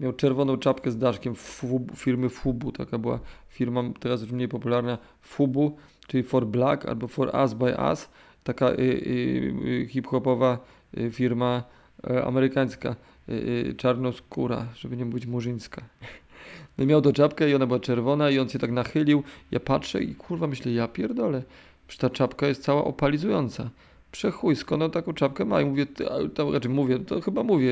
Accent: native